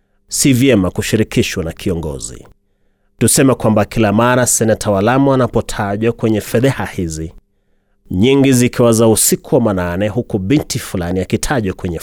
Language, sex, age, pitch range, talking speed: Swahili, male, 30-49, 100-130 Hz, 130 wpm